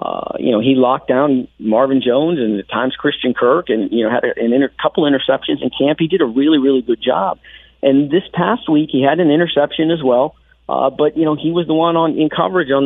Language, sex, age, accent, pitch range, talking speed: English, male, 40-59, American, 125-150 Hz, 245 wpm